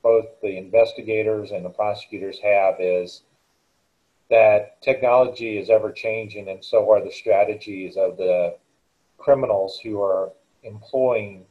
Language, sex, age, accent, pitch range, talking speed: English, male, 40-59, American, 105-125 Hz, 125 wpm